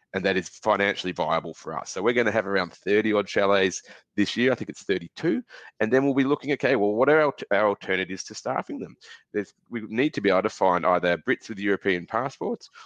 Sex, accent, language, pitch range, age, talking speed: male, Australian, English, 90-110 Hz, 30-49, 225 wpm